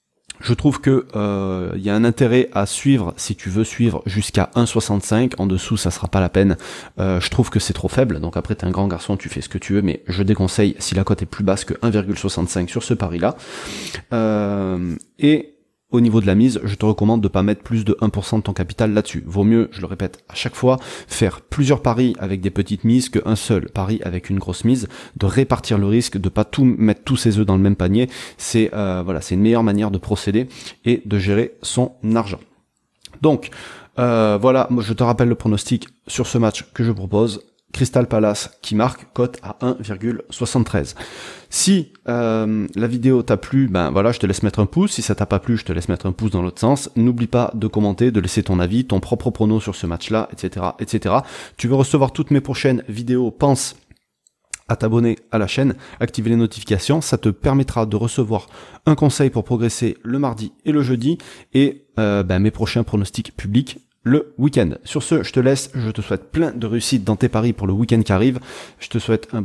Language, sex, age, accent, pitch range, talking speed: French, male, 30-49, French, 100-125 Hz, 220 wpm